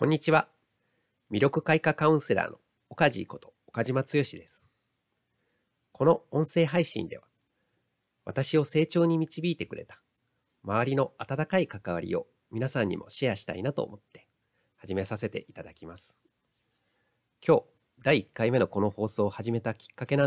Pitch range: 105-155 Hz